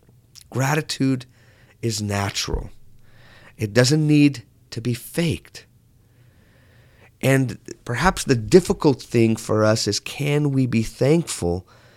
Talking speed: 105 wpm